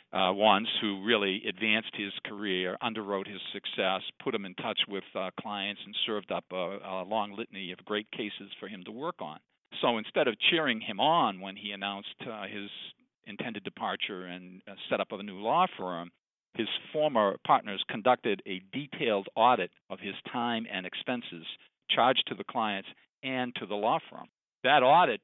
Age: 50-69